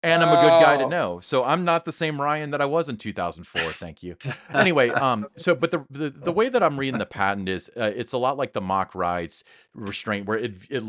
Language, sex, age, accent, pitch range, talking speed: English, male, 30-49, American, 95-120 Hz, 255 wpm